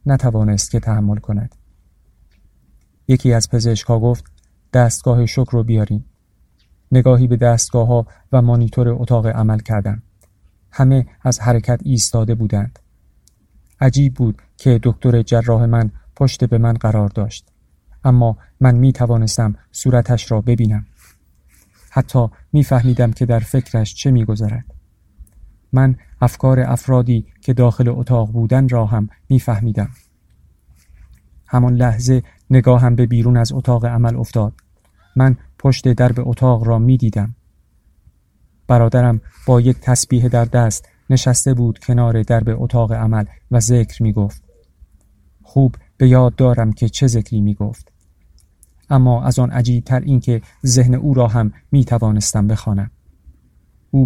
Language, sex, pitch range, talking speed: Persian, male, 105-125 Hz, 130 wpm